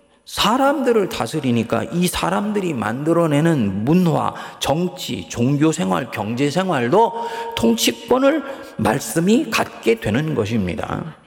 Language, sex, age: Korean, male, 40-59